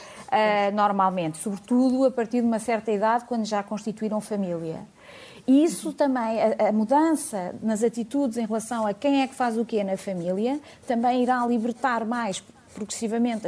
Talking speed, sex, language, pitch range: 165 wpm, female, Portuguese, 215-265 Hz